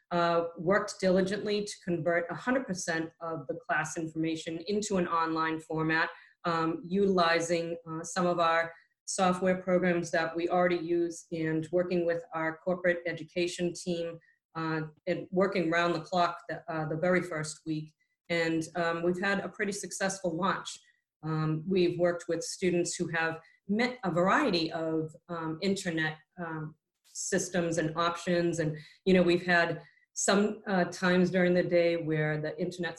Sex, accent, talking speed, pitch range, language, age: female, American, 155 wpm, 165-185 Hz, English, 40-59